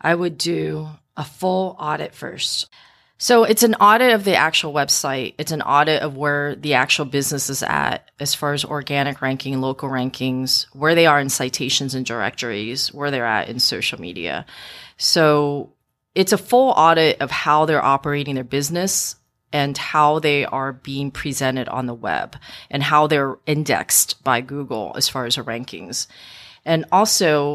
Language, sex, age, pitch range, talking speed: English, female, 30-49, 135-150 Hz, 170 wpm